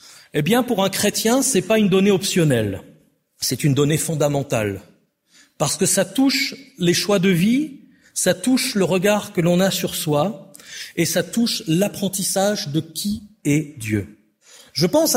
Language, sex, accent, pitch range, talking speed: French, male, French, 160-215 Hz, 165 wpm